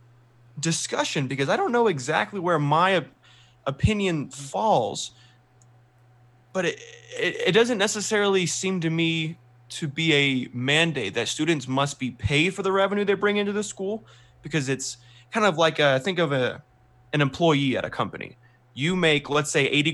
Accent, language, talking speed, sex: American, English, 165 wpm, male